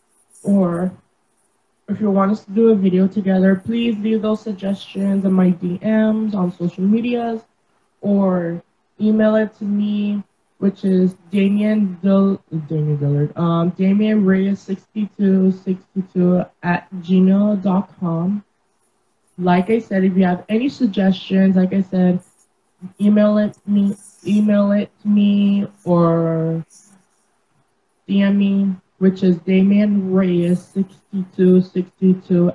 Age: 20-39